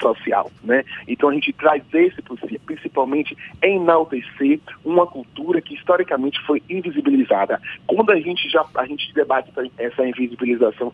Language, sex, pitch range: Portuguese, male, 130-180 Hz